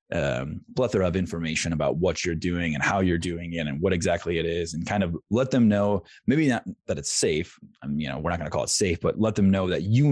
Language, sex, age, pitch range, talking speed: English, male, 20-39, 85-105 Hz, 265 wpm